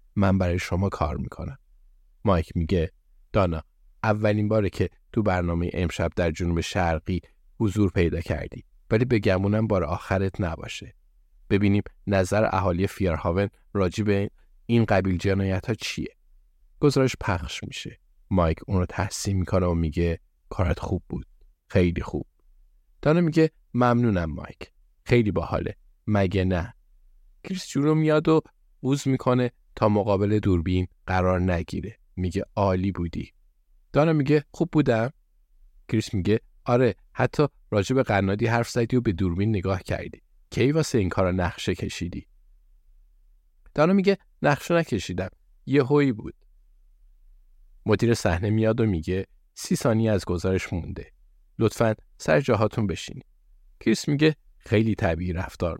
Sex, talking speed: male, 130 wpm